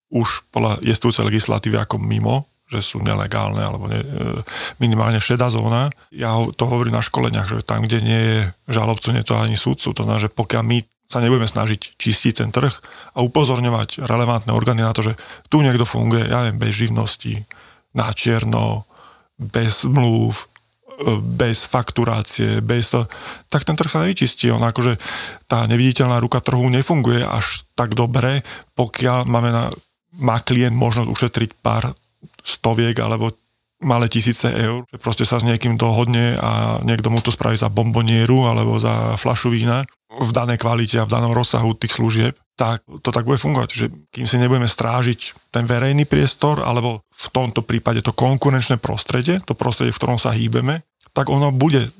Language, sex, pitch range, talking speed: Slovak, male, 115-125 Hz, 165 wpm